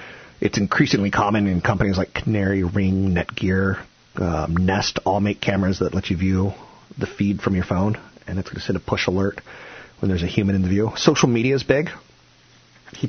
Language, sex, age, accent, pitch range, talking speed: English, male, 40-59, American, 95-115 Hz, 195 wpm